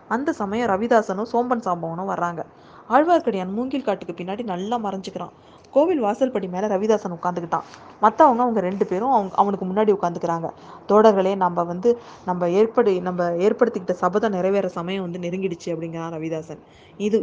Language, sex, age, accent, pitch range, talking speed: Tamil, female, 20-39, native, 175-215 Hz, 135 wpm